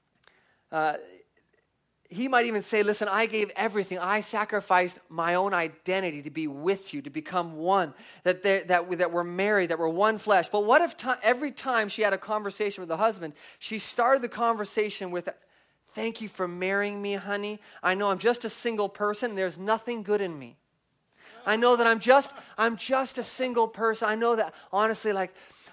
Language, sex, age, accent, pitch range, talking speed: English, male, 30-49, American, 175-225 Hz, 190 wpm